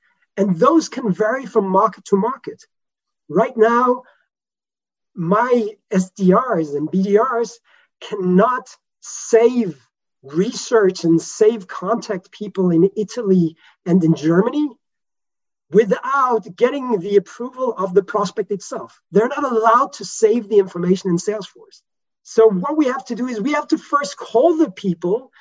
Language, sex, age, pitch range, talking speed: English, male, 40-59, 190-245 Hz, 135 wpm